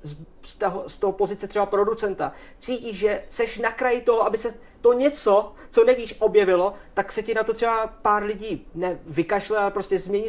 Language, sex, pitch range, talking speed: Czech, male, 175-205 Hz, 185 wpm